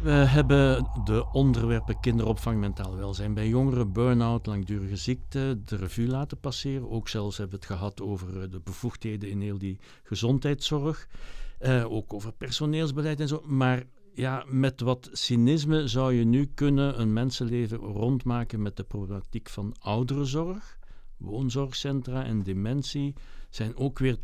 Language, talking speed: Dutch, 140 wpm